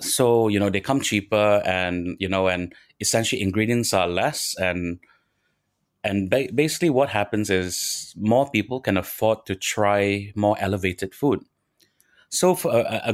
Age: 30-49